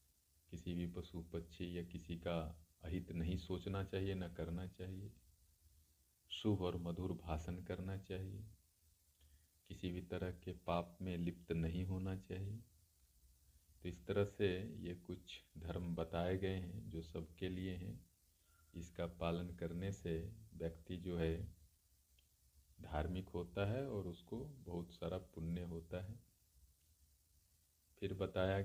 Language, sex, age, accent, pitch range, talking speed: Hindi, male, 50-69, native, 80-95 Hz, 130 wpm